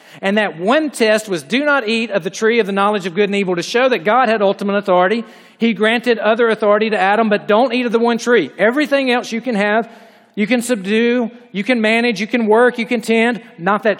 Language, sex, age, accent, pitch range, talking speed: English, male, 40-59, American, 185-230 Hz, 245 wpm